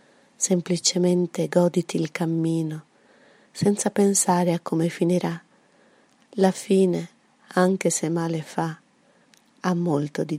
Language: Italian